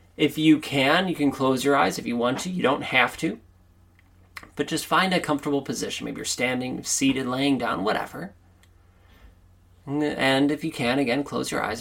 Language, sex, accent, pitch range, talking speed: English, male, American, 90-130 Hz, 190 wpm